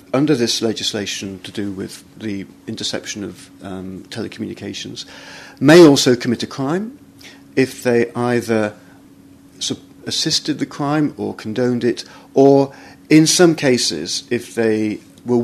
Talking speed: 125 wpm